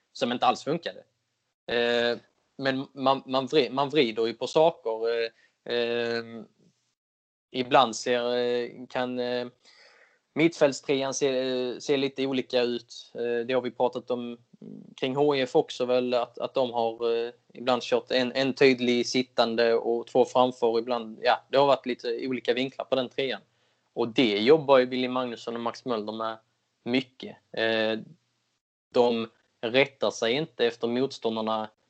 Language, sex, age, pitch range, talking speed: Swedish, male, 20-39, 115-135 Hz, 145 wpm